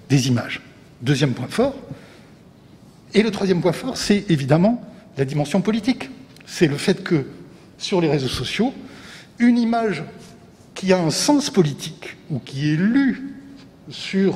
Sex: male